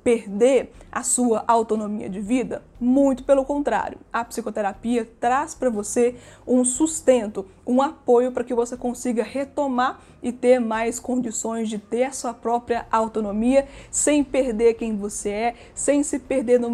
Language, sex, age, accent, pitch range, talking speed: Portuguese, female, 20-39, Brazilian, 225-260 Hz, 150 wpm